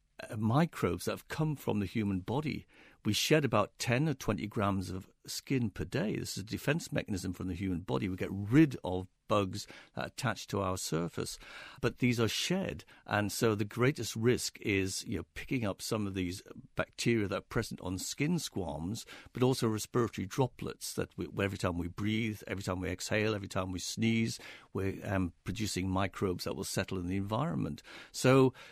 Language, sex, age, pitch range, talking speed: English, male, 50-69, 95-125 Hz, 190 wpm